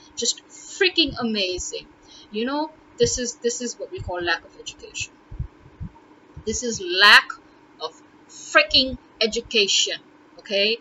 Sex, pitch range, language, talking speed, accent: female, 235-315 Hz, English, 120 wpm, Indian